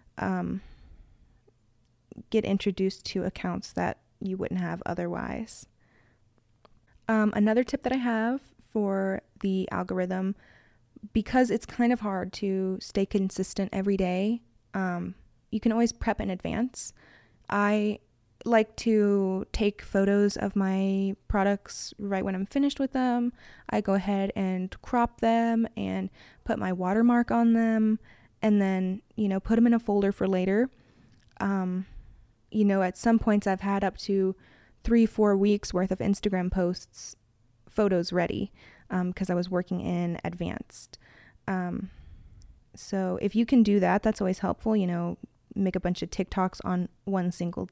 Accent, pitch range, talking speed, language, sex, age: American, 185-215 Hz, 150 wpm, English, female, 20-39